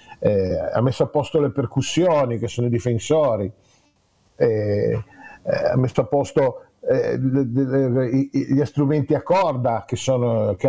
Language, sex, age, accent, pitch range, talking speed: Italian, male, 50-69, native, 115-140 Hz, 135 wpm